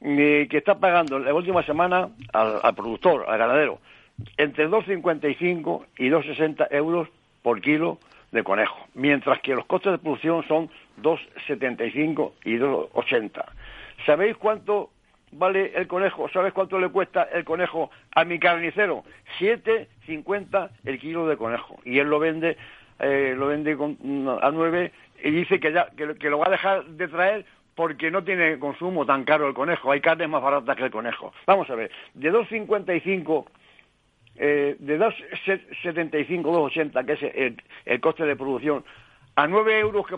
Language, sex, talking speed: Spanish, male, 160 wpm